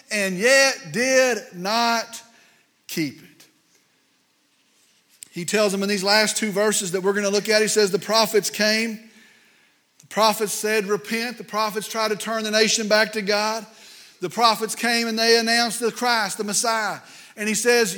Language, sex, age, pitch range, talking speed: English, male, 40-59, 215-245 Hz, 170 wpm